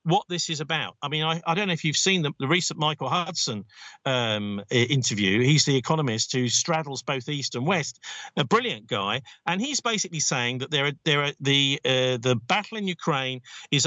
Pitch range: 145-190 Hz